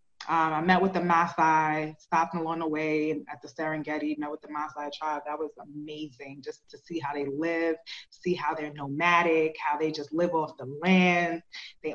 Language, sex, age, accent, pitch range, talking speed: English, female, 20-39, American, 155-195 Hz, 195 wpm